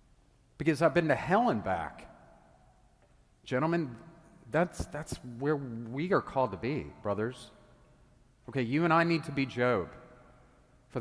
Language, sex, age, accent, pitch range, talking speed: English, male, 40-59, American, 115-140 Hz, 140 wpm